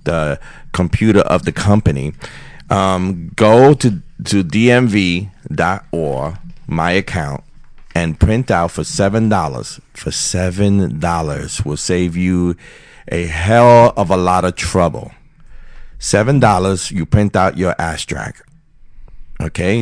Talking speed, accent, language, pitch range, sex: 110 wpm, American, English, 90-115 Hz, male